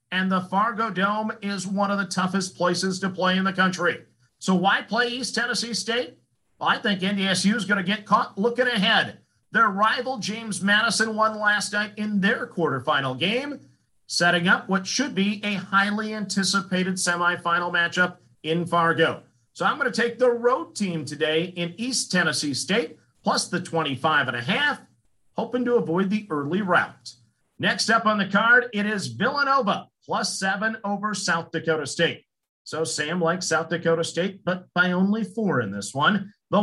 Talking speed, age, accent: 175 wpm, 50-69, American